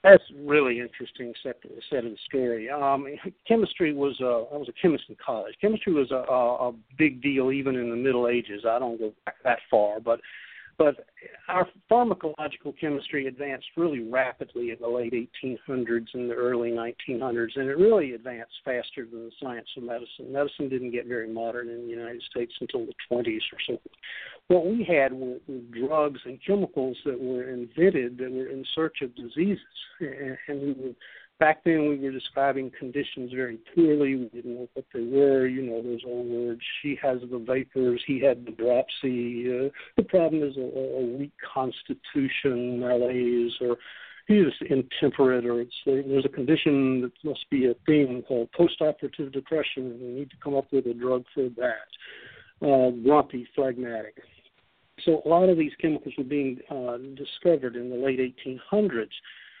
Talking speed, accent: 180 wpm, American